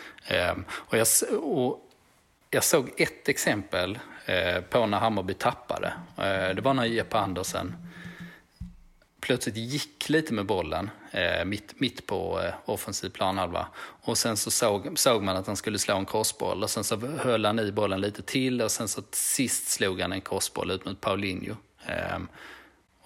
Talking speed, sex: 165 wpm, male